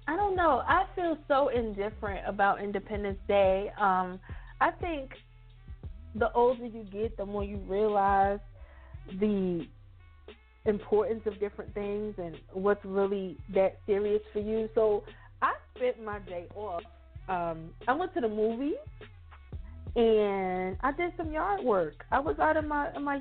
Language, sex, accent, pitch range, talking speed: English, female, American, 185-240 Hz, 145 wpm